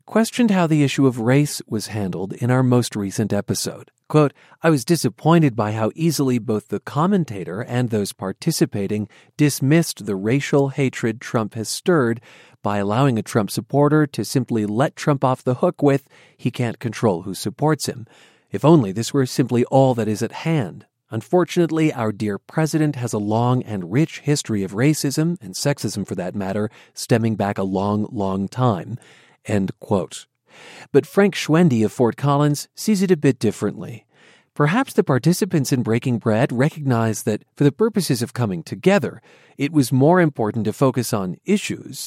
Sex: male